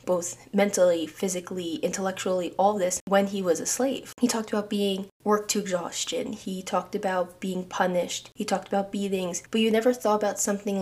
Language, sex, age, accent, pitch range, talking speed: English, female, 20-39, American, 185-230 Hz, 185 wpm